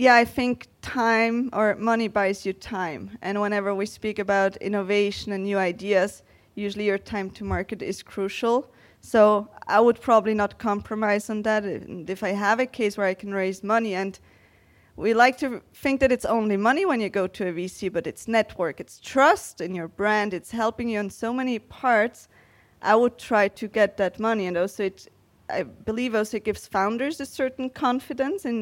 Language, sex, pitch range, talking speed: English, female, 195-230 Hz, 195 wpm